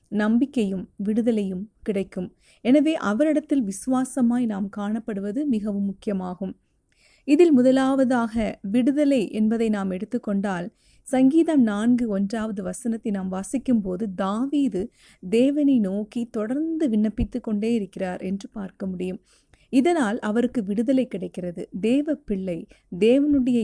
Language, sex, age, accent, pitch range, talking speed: Tamil, female, 30-49, native, 200-255 Hz, 100 wpm